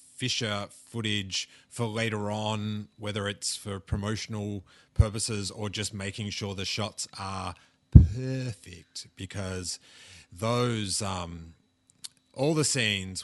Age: 30-49